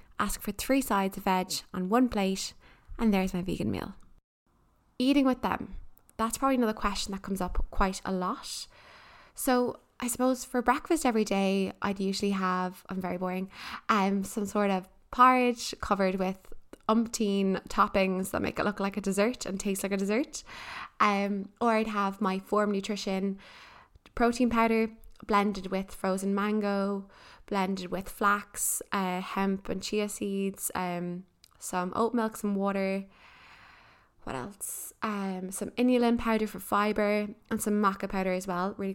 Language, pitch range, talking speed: English, 195-235 Hz, 160 wpm